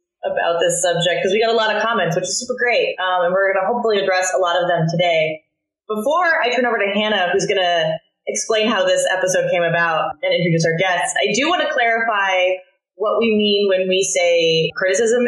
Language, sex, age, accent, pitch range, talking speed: English, female, 20-39, American, 170-215 Hz, 225 wpm